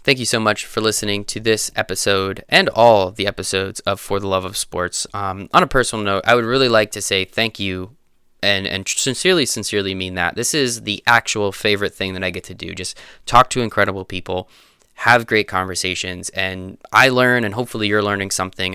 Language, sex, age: English, male, 20-39